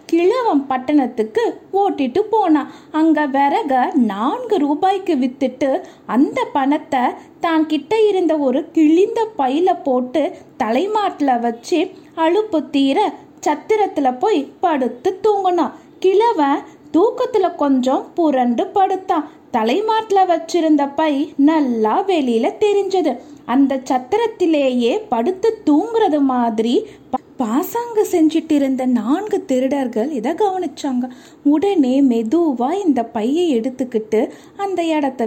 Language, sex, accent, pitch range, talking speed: Tamil, female, native, 265-365 Hz, 90 wpm